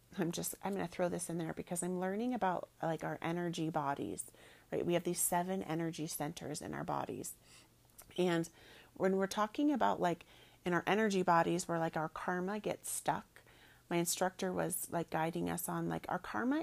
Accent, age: American, 30-49